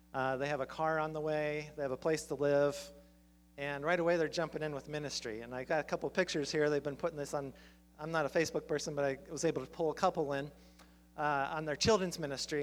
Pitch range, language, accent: 130-160 Hz, English, American